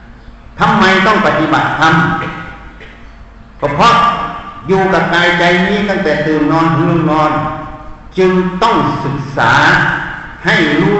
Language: Thai